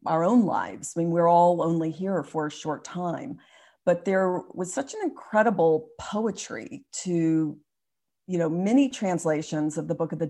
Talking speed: 175 wpm